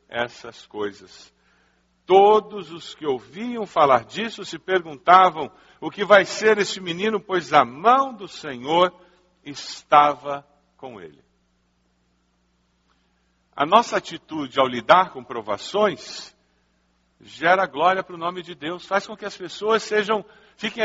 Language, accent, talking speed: Portuguese, Brazilian, 130 wpm